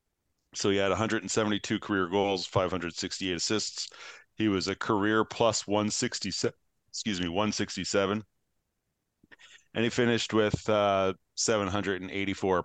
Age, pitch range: 40-59, 90-105 Hz